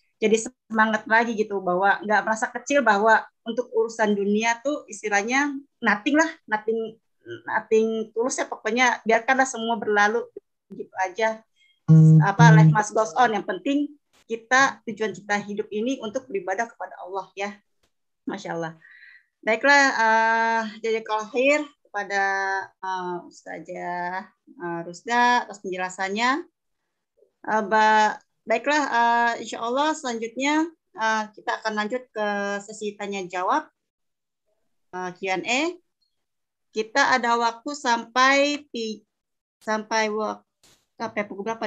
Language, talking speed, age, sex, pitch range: Indonesian, 110 wpm, 20-39, female, 200-255 Hz